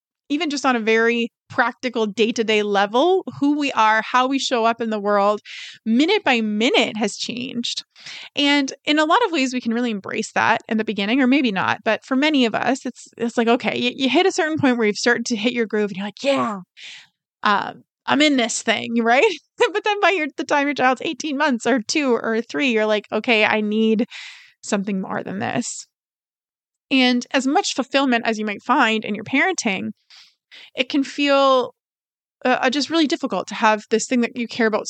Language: English